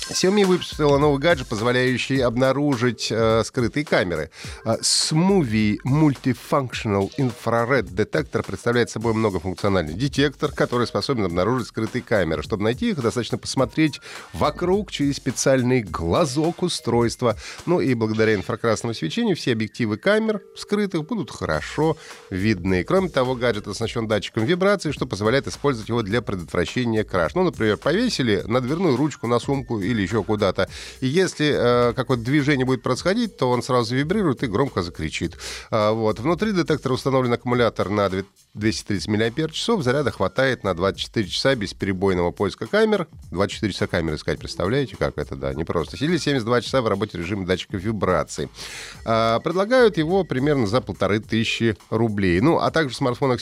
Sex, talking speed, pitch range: male, 145 wpm, 105-140 Hz